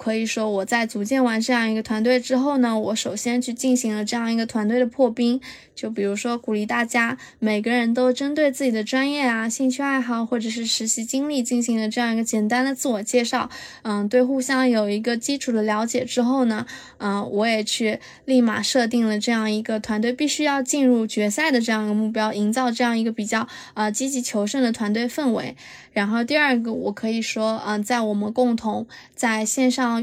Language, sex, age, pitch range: Chinese, female, 20-39, 220-255 Hz